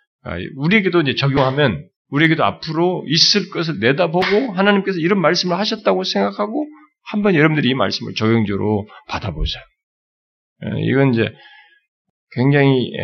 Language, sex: Korean, male